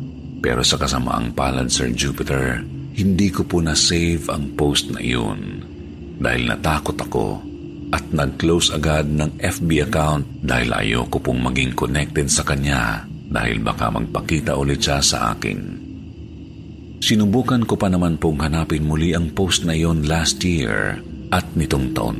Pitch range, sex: 70-85 Hz, male